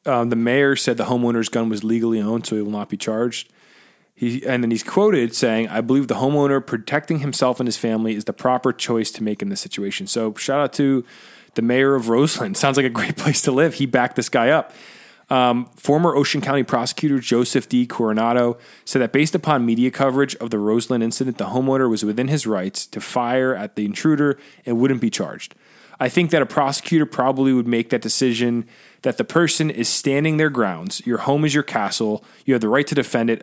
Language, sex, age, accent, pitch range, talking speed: English, male, 20-39, American, 115-145 Hz, 215 wpm